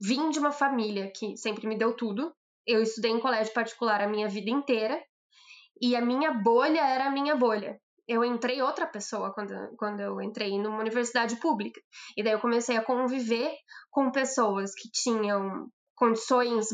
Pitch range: 225-275 Hz